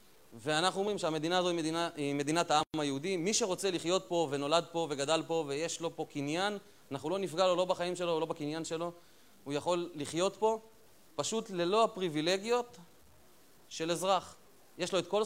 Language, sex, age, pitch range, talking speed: Hebrew, male, 30-49, 150-190 Hz, 175 wpm